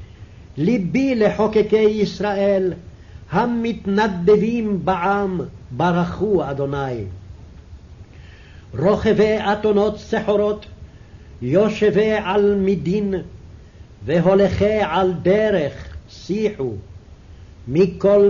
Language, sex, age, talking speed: English, male, 60-79, 60 wpm